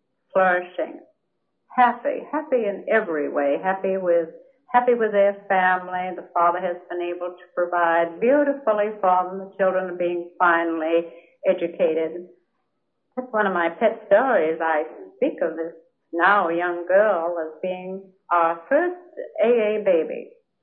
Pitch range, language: 175-220 Hz, English